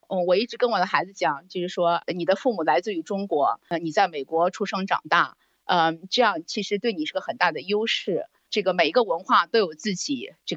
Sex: female